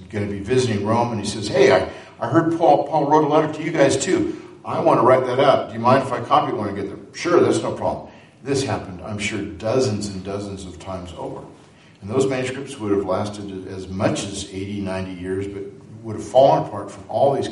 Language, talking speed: English, 245 wpm